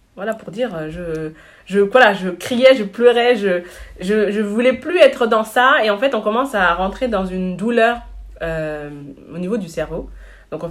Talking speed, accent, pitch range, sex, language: 190 wpm, French, 170-215 Hz, female, French